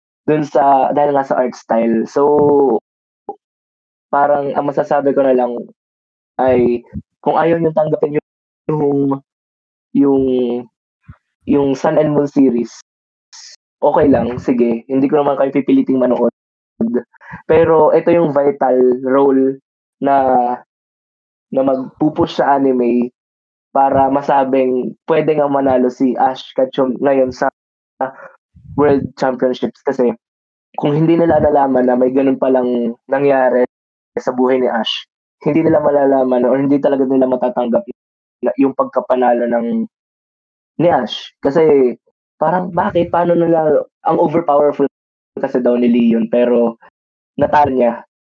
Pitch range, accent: 120-145 Hz, native